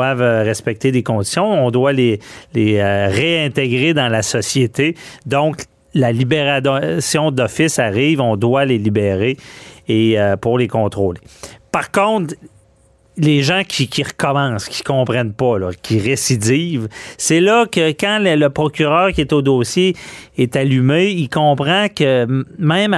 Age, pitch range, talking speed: 40-59, 115-150 Hz, 140 wpm